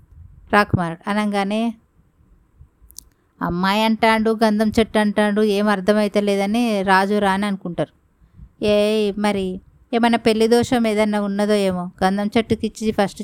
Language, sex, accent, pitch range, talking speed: Telugu, female, native, 190-225 Hz, 105 wpm